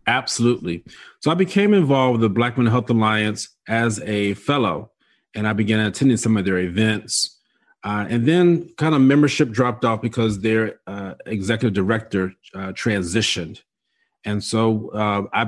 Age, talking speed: 40-59, 160 wpm